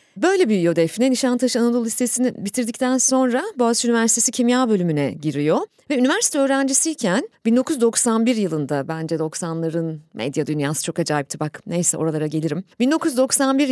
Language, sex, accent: Turkish, female, native